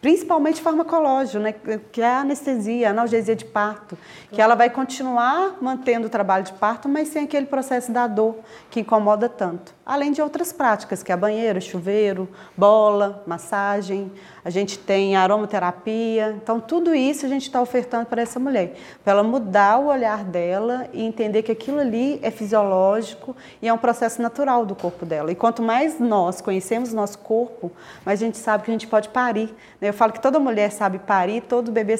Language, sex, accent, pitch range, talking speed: Portuguese, female, Brazilian, 200-245 Hz, 185 wpm